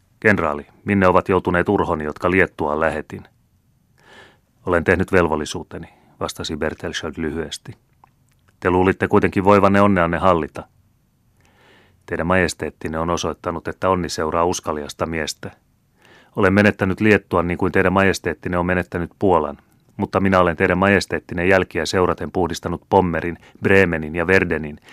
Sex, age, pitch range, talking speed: male, 30-49, 85-100 Hz, 125 wpm